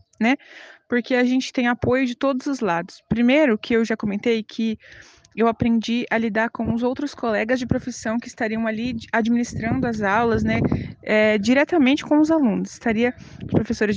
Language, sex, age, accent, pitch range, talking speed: Portuguese, female, 20-39, Brazilian, 220-265 Hz, 170 wpm